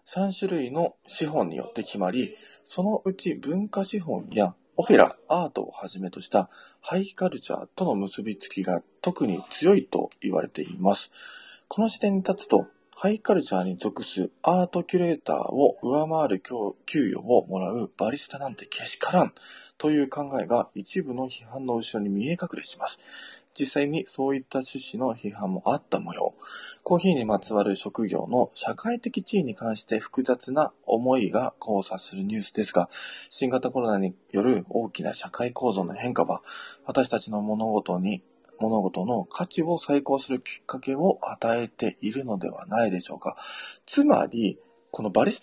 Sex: male